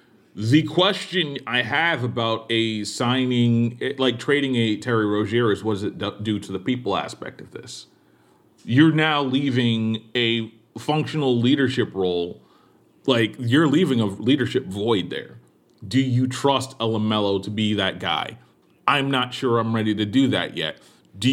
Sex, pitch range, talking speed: male, 115-150 Hz, 160 wpm